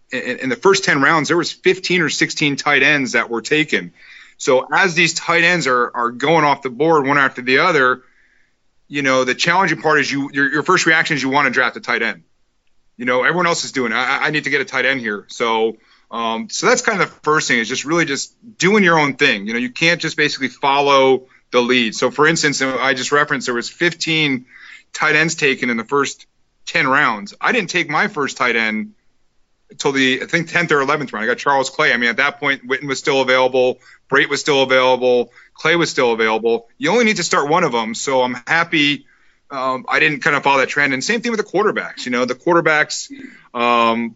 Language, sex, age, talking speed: English, male, 30-49, 235 wpm